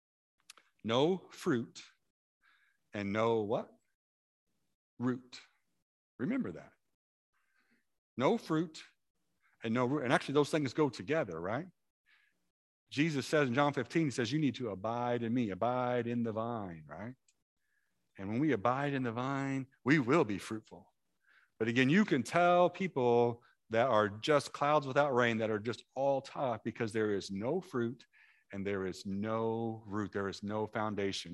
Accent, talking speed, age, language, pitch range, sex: American, 155 wpm, 50-69, English, 110-150 Hz, male